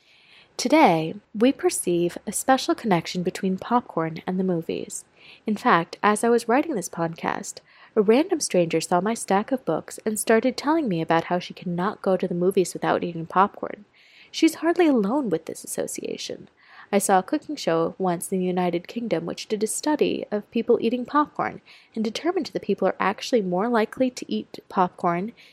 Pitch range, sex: 180-250 Hz, female